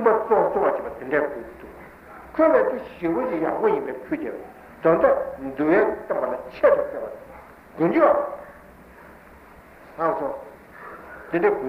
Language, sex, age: Italian, male, 60-79